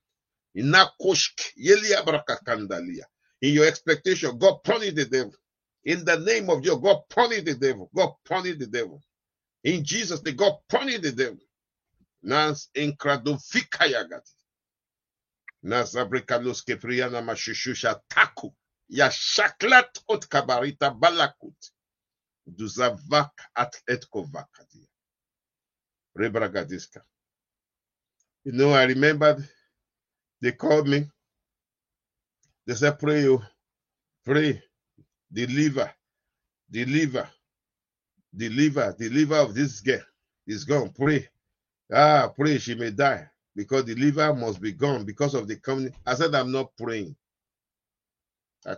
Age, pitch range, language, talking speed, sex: 50-69, 125-150 Hz, English, 120 wpm, male